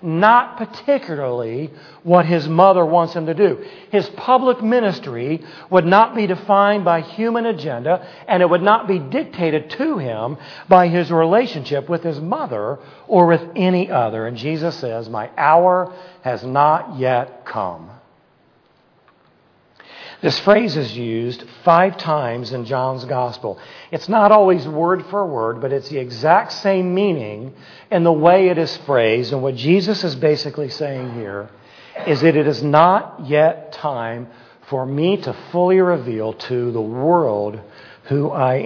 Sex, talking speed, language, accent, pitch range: male, 150 wpm, English, American, 130-185 Hz